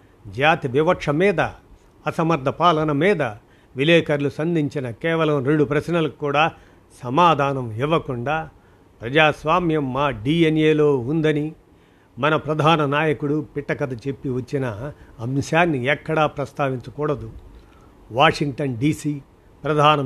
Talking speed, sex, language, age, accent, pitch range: 90 wpm, male, Telugu, 50-69, native, 130-155 Hz